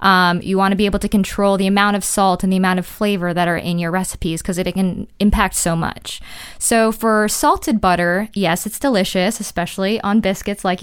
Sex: female